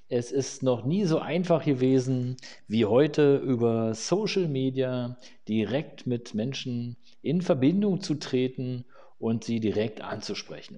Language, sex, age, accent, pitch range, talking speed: German, male, 40-59, German, 115-145 Hz, 130 wpm